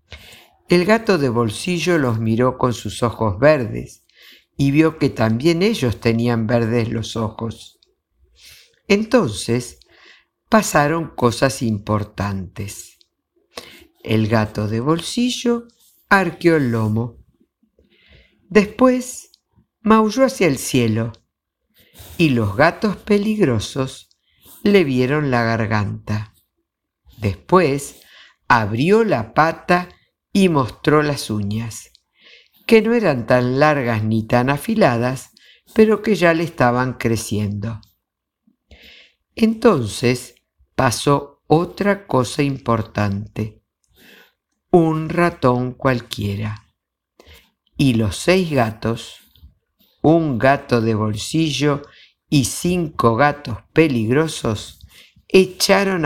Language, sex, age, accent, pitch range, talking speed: Spanish, female, 50-69, Argentinian, 110-170 Hz, 90 wpm